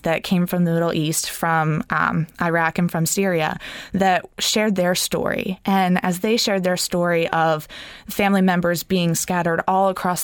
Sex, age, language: female, 20-39, English